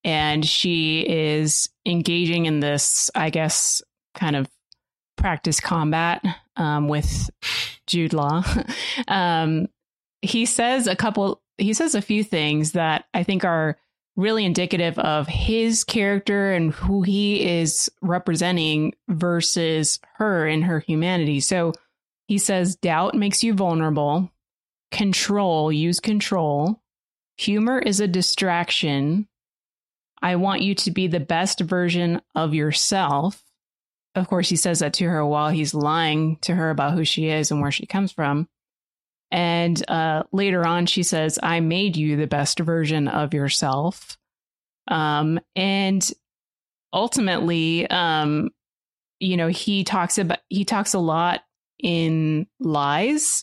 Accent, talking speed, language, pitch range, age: American, 135 wpm, English, 155-195 Hz, 20-39